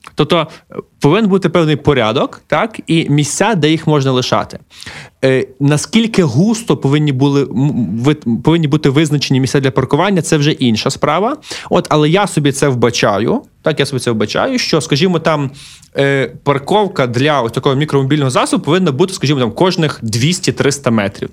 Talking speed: 155 wpm